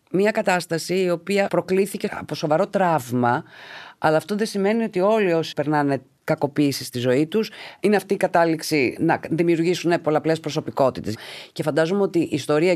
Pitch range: 130-195 Hz